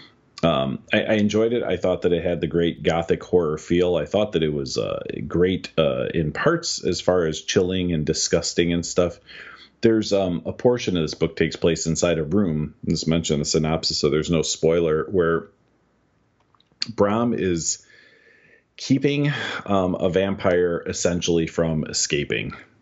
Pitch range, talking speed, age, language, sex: 75-95 Hz, 170 wpm, 40-59, English, male